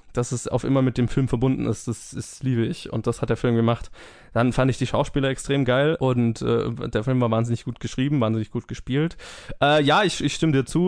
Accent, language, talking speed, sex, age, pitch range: German, German, 245 wpm, male, 20-39, 115-135 Hz